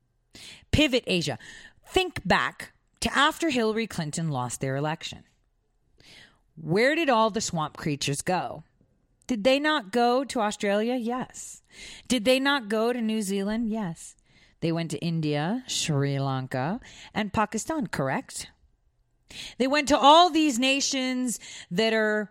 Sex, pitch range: female, 165-255 Hz